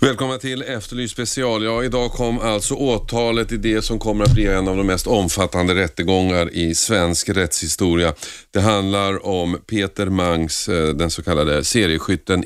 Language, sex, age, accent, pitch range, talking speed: Swedish, male, 40-59, native, 85-110 Hz, 155 wpm